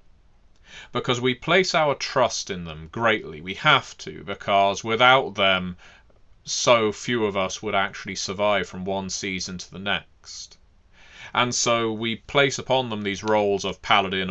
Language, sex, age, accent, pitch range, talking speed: English, male, 30-49, British, 90-110 Hz, 155 wpm